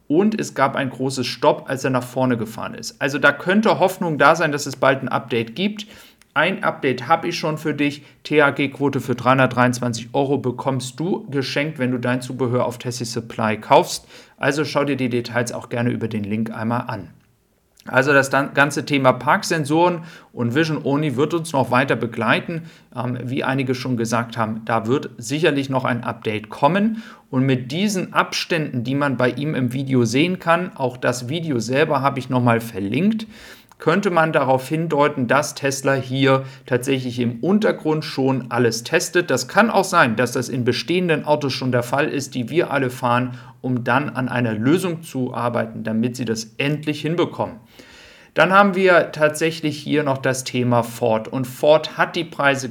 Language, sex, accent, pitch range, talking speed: German, male, German, 125-155 Hz, 180 wpm